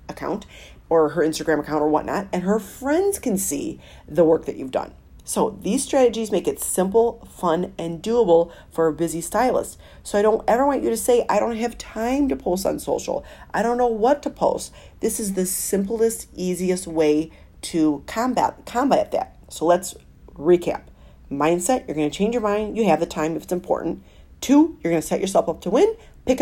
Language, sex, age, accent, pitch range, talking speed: English, female, 40-59, American, 165-230 Hz, 200 wpm